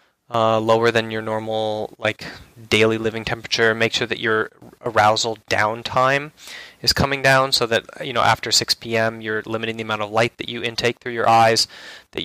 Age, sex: 20-39, male